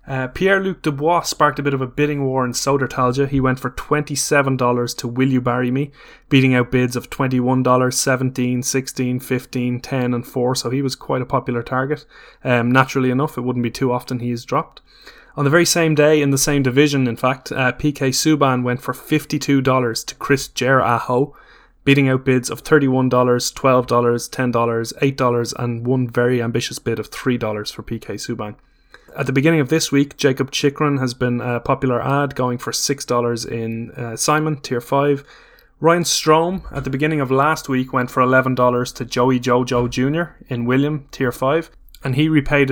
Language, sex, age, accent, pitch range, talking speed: English, male, 20-39, Irish, 125-145 Hz, 185 wpm